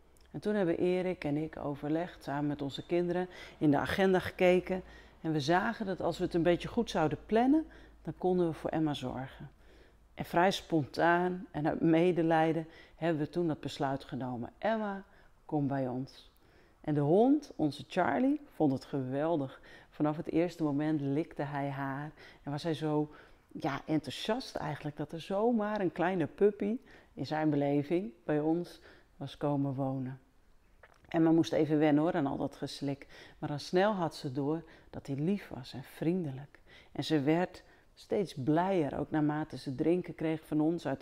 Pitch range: 145-175 Hz